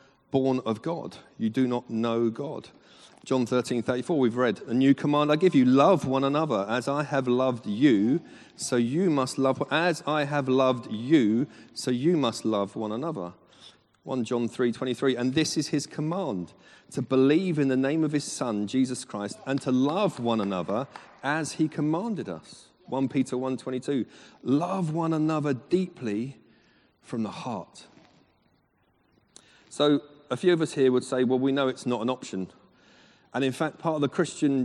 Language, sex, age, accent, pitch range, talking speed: English, male, 40-59, British, 120-150 Hz, 175 wpm